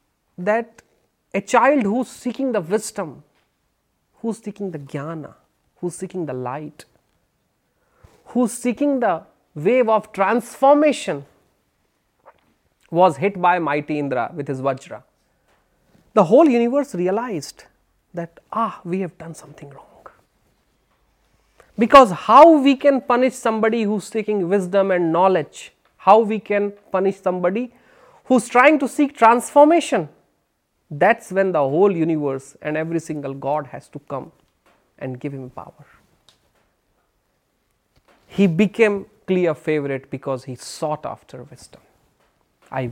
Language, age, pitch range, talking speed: Hindi, 30-49, 165-240 Hz, 125 wpm